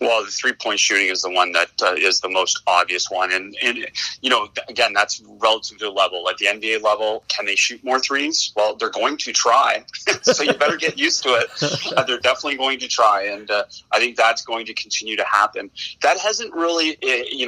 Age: 30-49